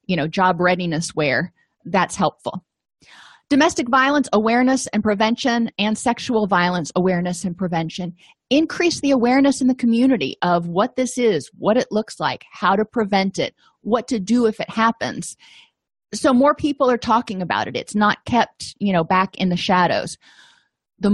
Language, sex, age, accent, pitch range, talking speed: English, female, 30-49, American, 180-235 Hz, 165 wpm